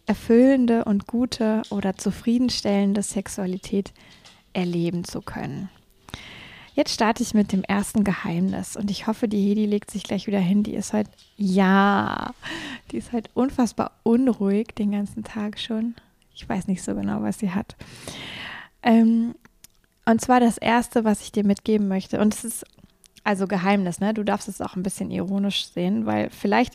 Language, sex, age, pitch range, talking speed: German, female, 20-39, 195-230 Hz, 160 wpm